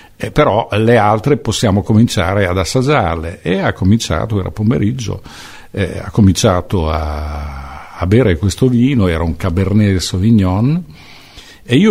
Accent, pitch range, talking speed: native, 95-120 Hz, 135 wpm